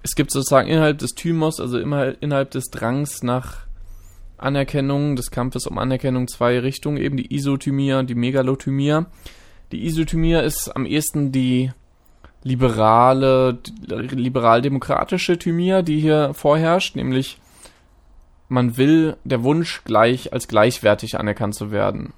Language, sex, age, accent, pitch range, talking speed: German, male, 20-39, German, 110-135 Hz, 130 wpm